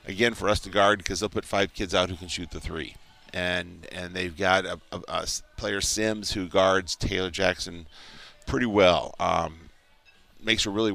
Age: 40-59